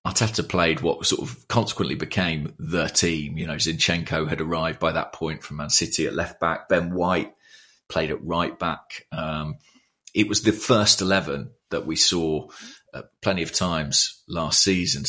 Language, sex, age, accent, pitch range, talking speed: English, male, 30-49, British, 85-105 Hz, 175 wpm